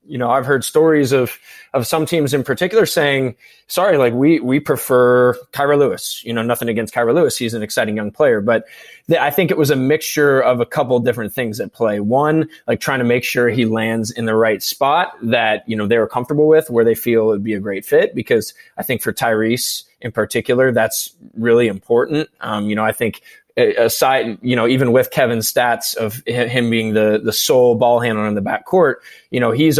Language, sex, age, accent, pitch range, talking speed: English, male, 20-39, American, 115-140 Hz, 220 wpm